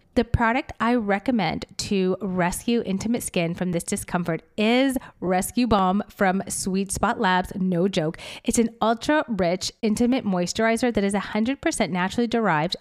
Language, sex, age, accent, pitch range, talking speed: English, female, 30-49, American, 185-235 Hz, 150 wpm